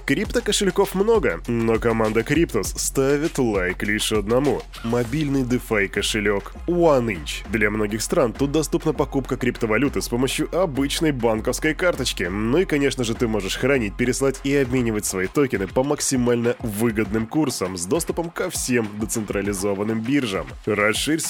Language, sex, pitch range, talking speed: Russian, male, 110-150 Hz, 140 wpm